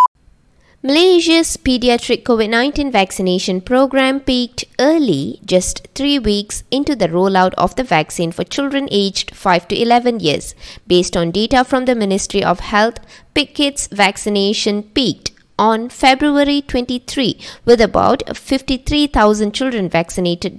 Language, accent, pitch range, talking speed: English, Indian, 190-260 Hz, 120 wpm